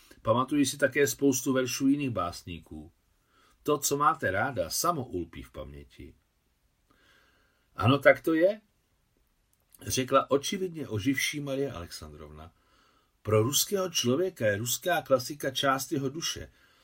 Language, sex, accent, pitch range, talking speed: Czech, male, native, 95-140 Hz, 120 wpm